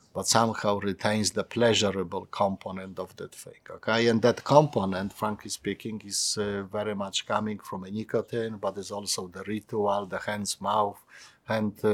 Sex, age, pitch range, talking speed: male, 50-69, 100-115 Hz, 160 wpm